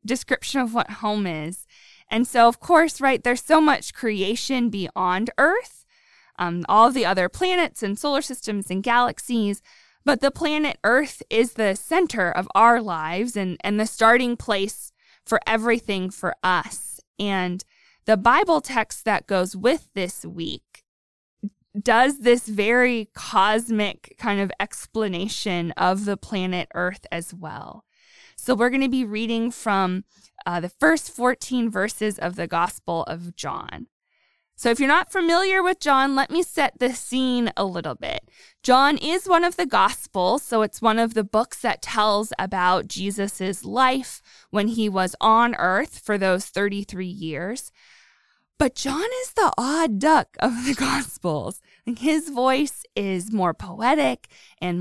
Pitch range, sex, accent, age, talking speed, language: 195-260 Hz, female, American, 20-39, 155 wpm, English